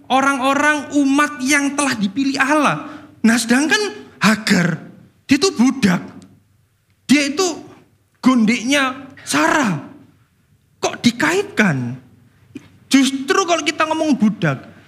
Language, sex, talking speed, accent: Indonesian, male, 95 wpm, native